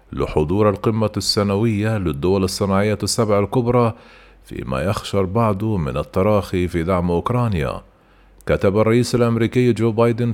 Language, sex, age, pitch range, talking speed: Arabic, male, 40-59, 100-115 Hz, 115 wpm